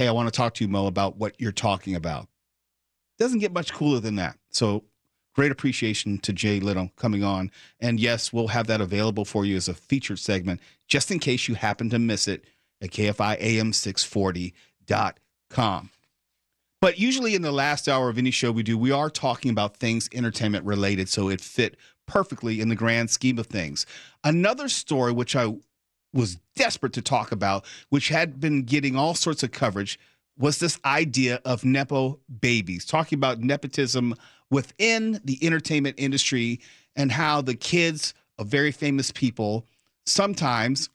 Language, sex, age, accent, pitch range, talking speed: English, male, 40-59, American, 110-145 Hz, 170 wpm